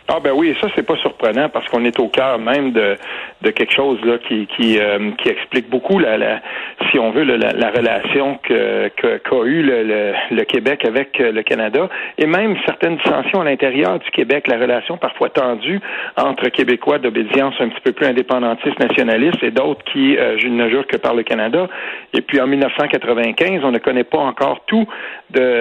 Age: 40-59